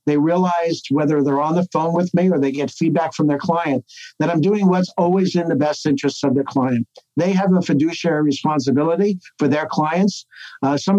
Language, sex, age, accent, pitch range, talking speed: English, male, 60-79, American, 145-175 Hz, 205 wpm